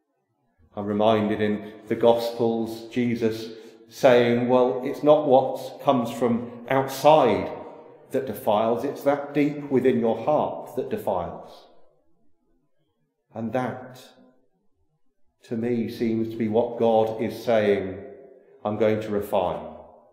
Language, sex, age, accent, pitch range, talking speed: English, male, 40-59, British, 110-125 Hz, 115 wpm